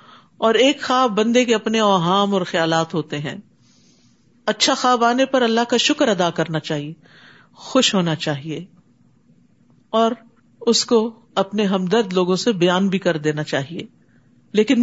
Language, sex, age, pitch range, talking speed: Urdu, female, 50-69, 200-275 Hz, 150 wpm